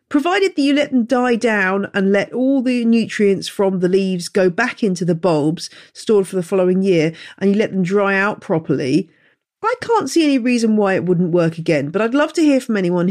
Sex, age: female, 40-59